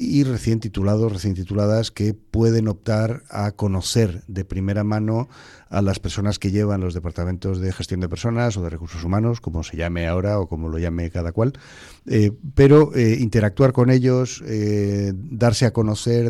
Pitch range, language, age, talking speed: 95-120 Hz, Spanish, 40-59, 175 wpm